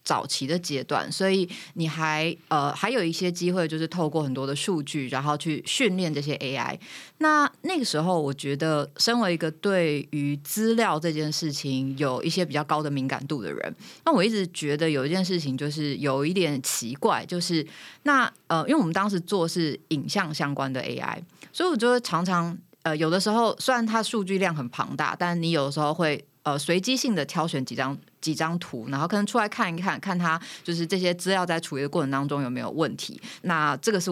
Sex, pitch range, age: female, 150-205 Hz, 20-39